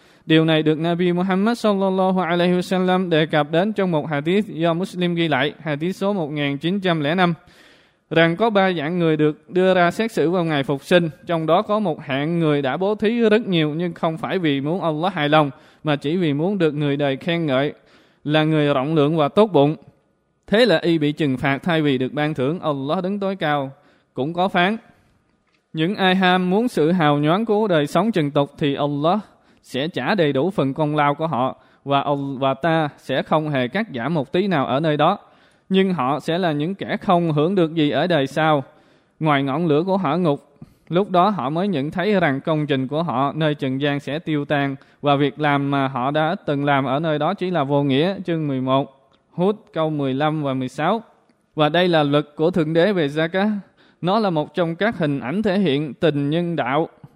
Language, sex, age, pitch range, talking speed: Vietnamese, male, 20-39, 145-180 Hz, 215 wpm